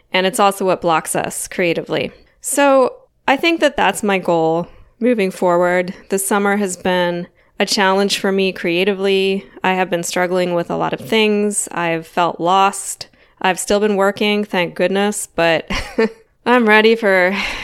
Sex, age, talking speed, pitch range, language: female, 20-39, 160 wpm, 175-215 Hz, English